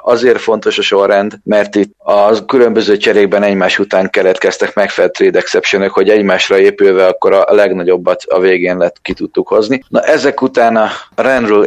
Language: Hungarian